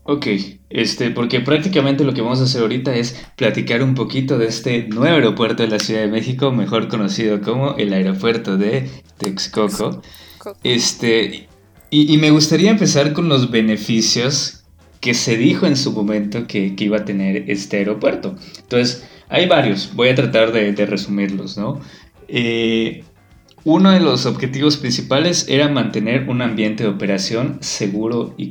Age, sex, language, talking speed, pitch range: 20-39, male, Spanish, 160 wpm, 105-130 Hz